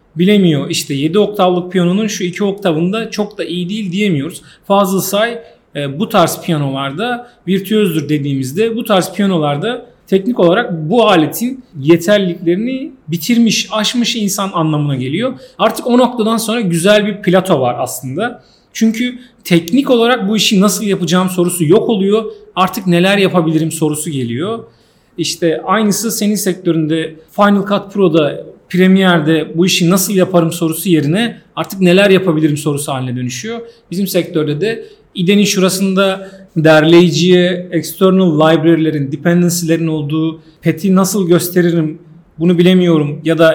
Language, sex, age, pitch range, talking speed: Turkish, male, 40-59, 160-205 Hz, 130 wpm